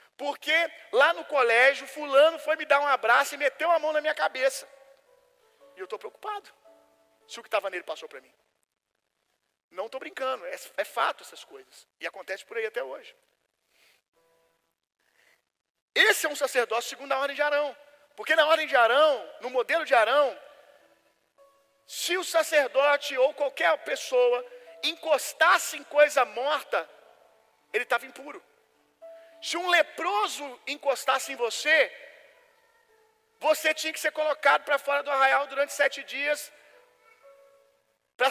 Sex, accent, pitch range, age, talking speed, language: male, Brazilian, 270-320 Hz, 40-59, 145 wpm, Gujarati